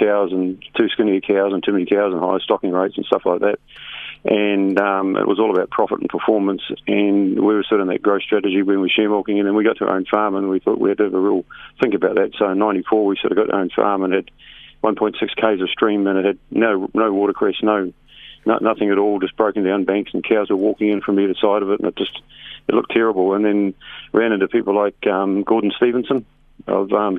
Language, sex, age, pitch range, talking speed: English, male, 40-59, 95-105 Hz, 265 wpm